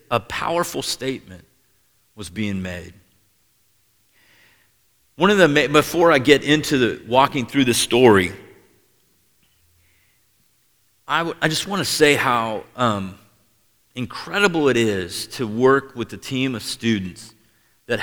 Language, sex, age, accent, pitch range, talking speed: English, male, 50-69, American, 110-135 Hz, 125 wpm